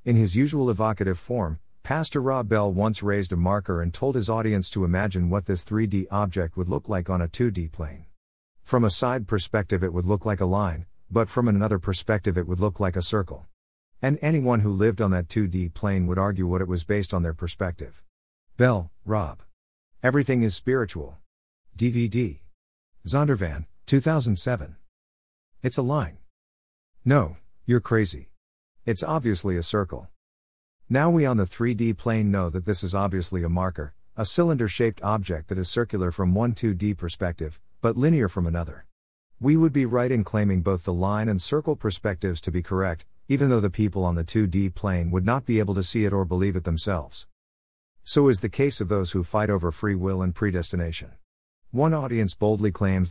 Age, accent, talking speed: 50-69, American, 185 wpm